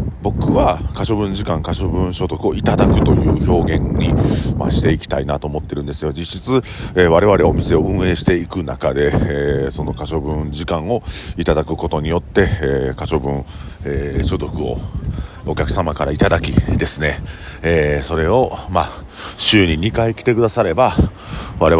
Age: 40-59